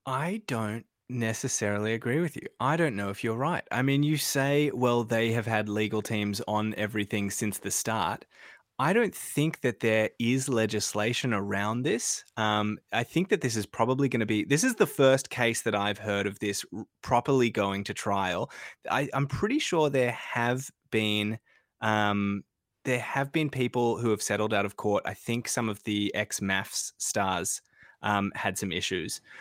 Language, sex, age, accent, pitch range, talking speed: English, male, 20-39, Australian, 105-140 Hz, 185 wpm